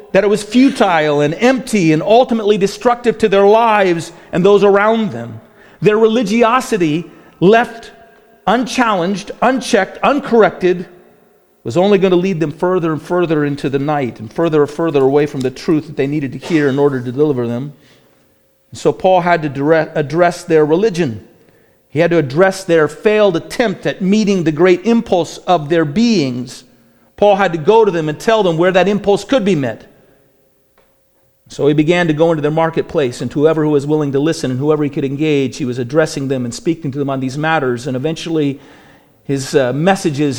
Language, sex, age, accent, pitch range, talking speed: English, male, 40-59, American, 145-185 Hz, 190 wpm